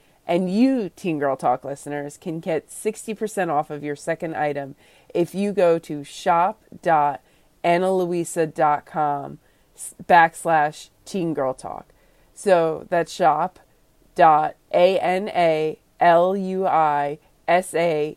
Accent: American